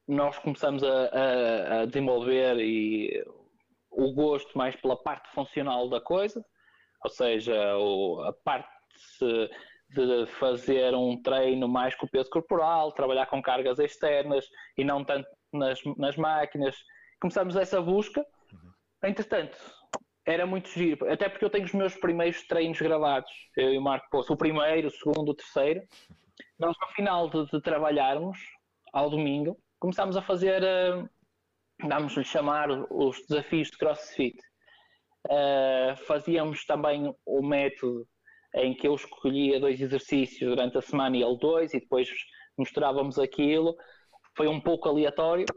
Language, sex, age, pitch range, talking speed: Portuguese, male, 20-39, 135-180 Hz, 140 wpm